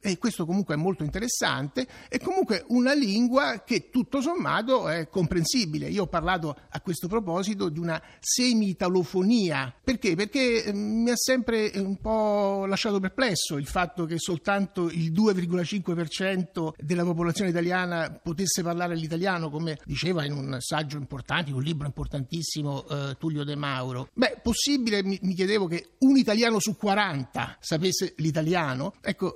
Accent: native